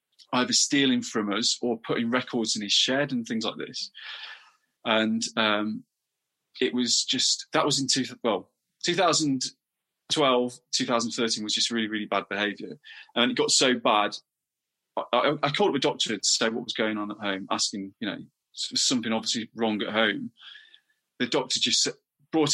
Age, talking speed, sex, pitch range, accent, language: 30-49, 170 wpm, male, 110-140 Hz, British, English